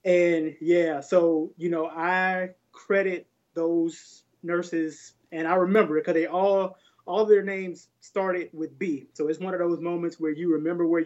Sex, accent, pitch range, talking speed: male, American, 160-185 Hz, 175 wpm